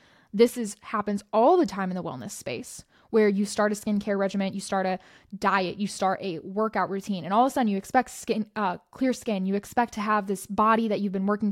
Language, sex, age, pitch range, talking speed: English, female, 10-29, 200-245 Hz, 240 wpm